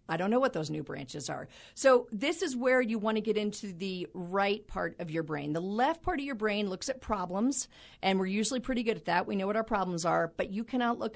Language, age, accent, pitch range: English, 40-59, American, 170-220 Hz